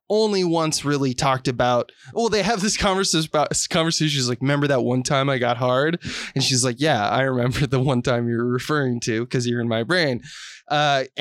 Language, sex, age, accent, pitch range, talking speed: English, male, 20-39, American, 125-160 Hz, 220 wpm